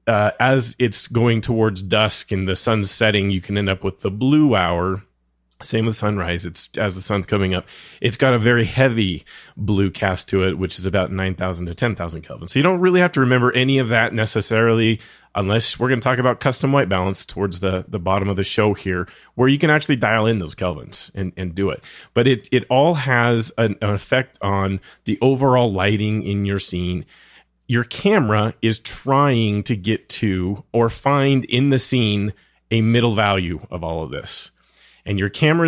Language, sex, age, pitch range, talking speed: English, male, 30-49, 95-125 Hz, 200 wpm